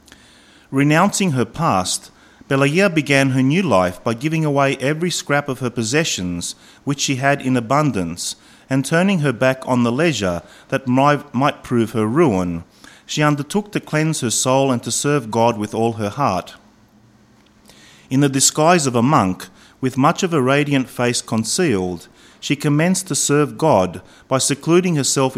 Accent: Australian